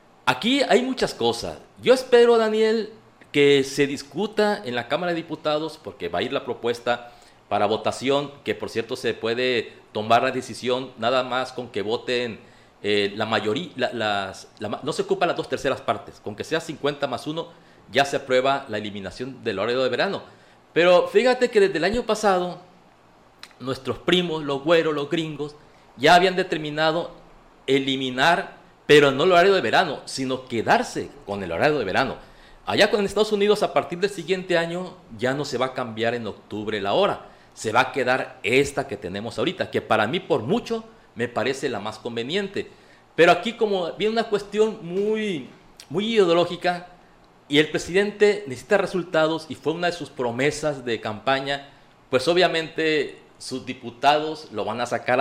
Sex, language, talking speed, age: male, Spanish, 170 wpm, 50-69